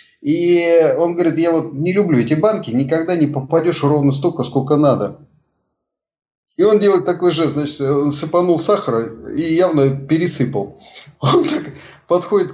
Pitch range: 135-175 Hz